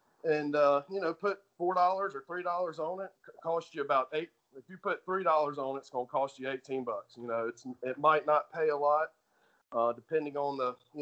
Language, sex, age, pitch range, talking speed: English, male, 40-59, 130-180 Hz, 225 wpm